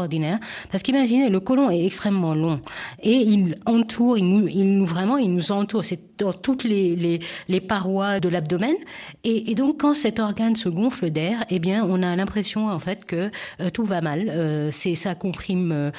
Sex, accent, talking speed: female, French, 190 wpm